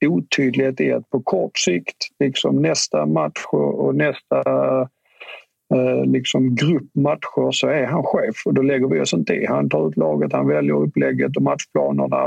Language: Swedish